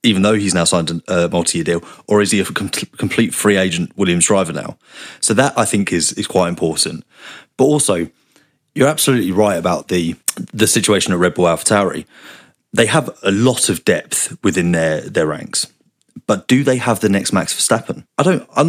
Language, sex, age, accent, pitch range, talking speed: English, male, 30-49, British, 90-130 Hz, 195 wpm